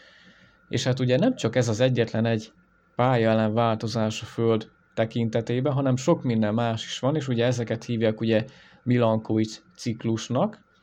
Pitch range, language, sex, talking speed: 110-130 Hz, Hungarian, male, 155 wpm